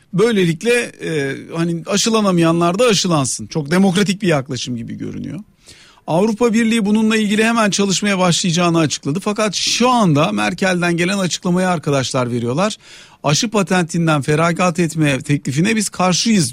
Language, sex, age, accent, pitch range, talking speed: Turkish, male, 50-69, native, 155-200 Hz, 125 wpm